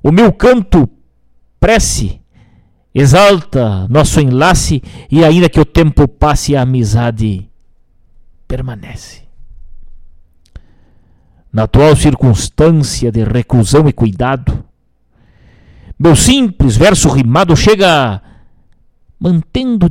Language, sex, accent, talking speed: Portuguese, male, Brazilian, 85 wpm